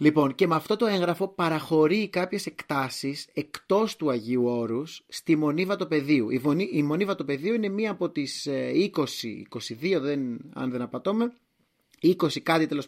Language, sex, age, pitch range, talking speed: Greek, male, 30-49, 135-195 Hz, 150 wpm